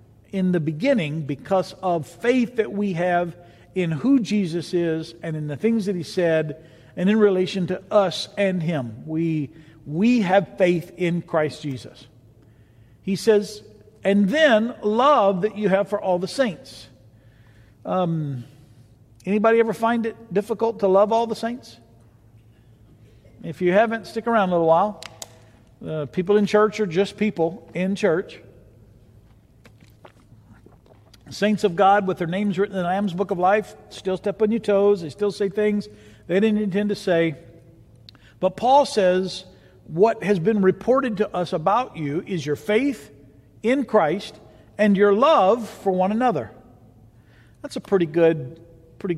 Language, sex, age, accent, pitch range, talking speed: English, male, 50-69, American, 135-205 Hz, 155 wpm